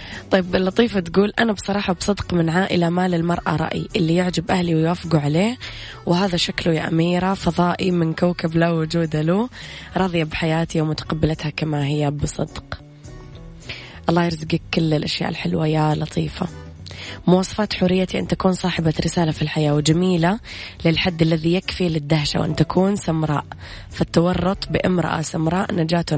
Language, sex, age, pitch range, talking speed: Arabic, female, 20-39, 155-185 Hz, 140 wpm